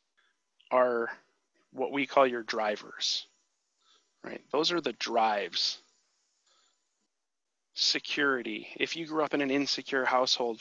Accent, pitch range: American, 115-135 Hz